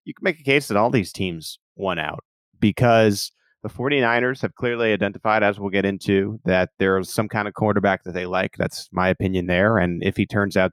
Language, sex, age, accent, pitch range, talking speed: English, male, 30-49, American, 95-125 Hz, 220 wpm